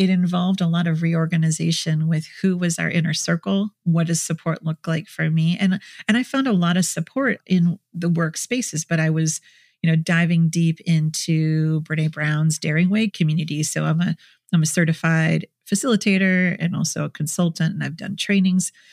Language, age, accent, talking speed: English, 40-59, American, 185 wpm